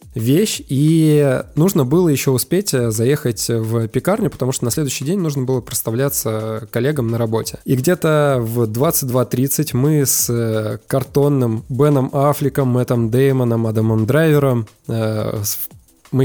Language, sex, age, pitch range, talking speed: Russian, male, 20-39, 115-145 Hz, 125 wpm